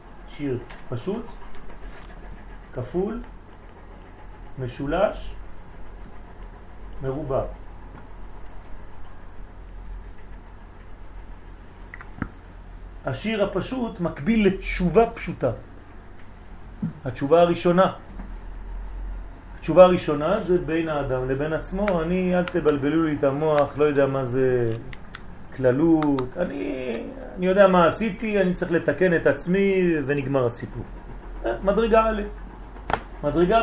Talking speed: 80 wpm